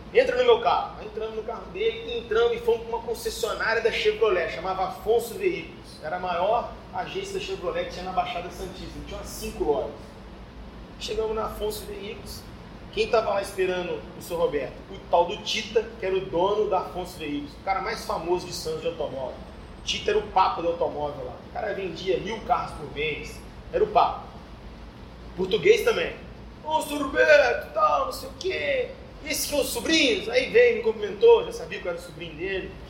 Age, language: 30-49, Portuguese